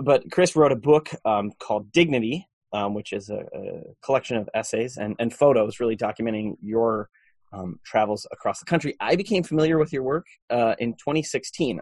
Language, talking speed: English, 185 wpm